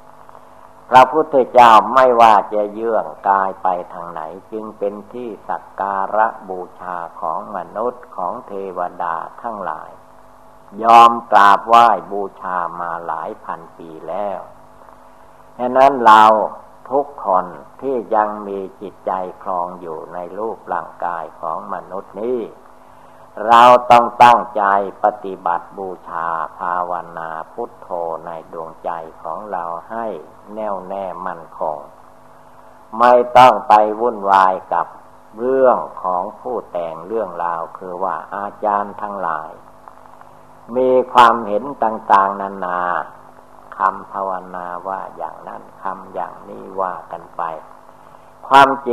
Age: 60-79